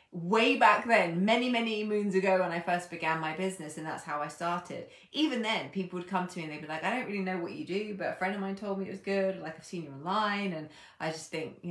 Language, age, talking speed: English, 20-39, 285 wpm